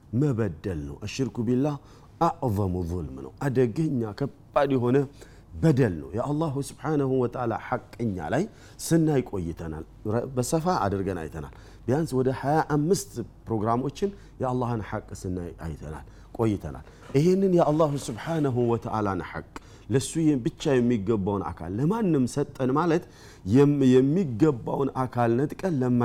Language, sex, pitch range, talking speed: Amharic, male, 100-145 Hz, 115 wpm